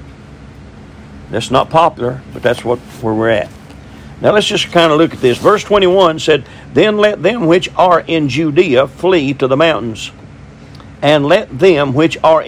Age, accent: 50-69, American